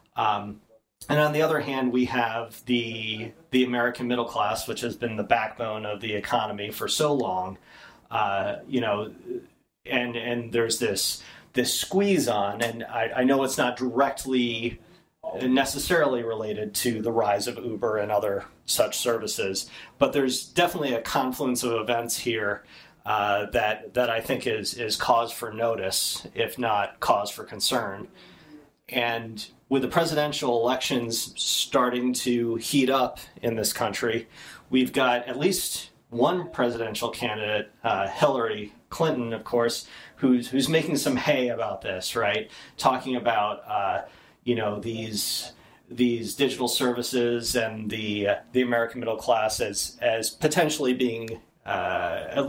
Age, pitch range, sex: 30-49, 115-130 Hz, male